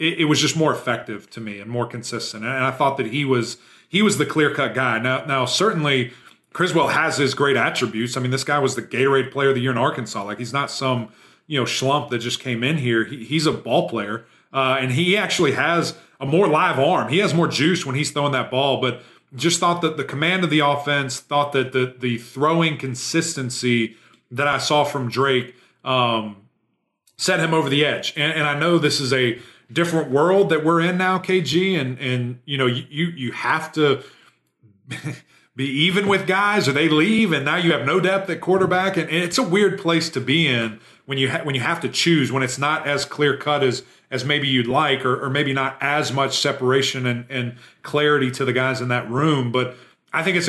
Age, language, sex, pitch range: 30-49, English, male, 130-160 Hz